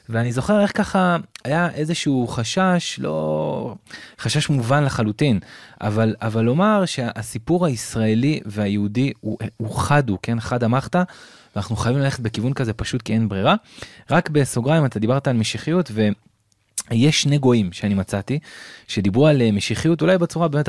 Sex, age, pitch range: male, 20-39, 110-155 Hz